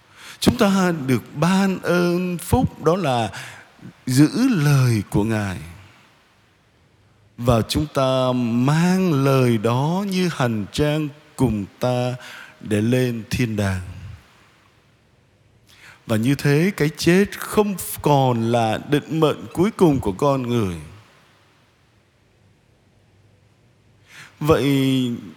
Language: Vietnamese